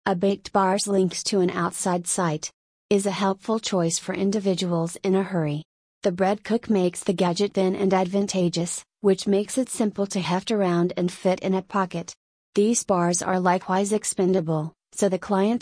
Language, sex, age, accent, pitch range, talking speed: English, female, 30-49, American, 180-200 Hz, 175 wpm